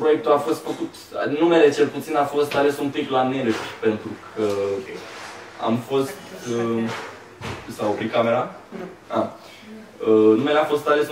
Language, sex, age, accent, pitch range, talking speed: Romanian, male, 20-39, native, 110-135 Hz, 155 wpm